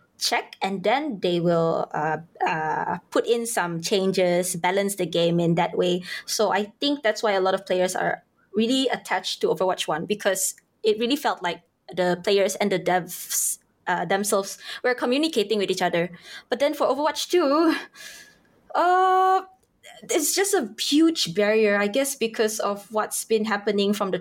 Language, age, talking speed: English, 20-39, 170 wpm